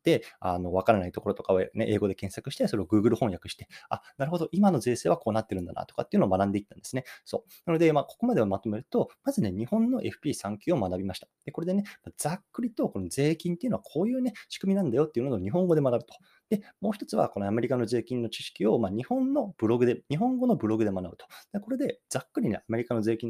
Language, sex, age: Japanese, male, 20-39